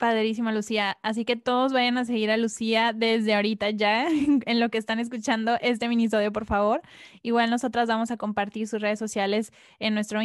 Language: Spanish